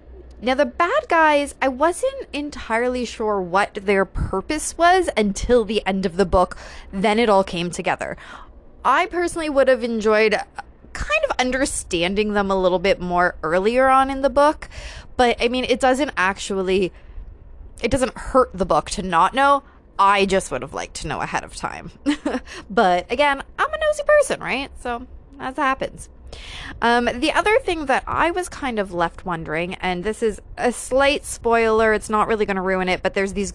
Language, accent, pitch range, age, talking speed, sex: English, American, 185-270 Hz, 20-39, 185 wpm, female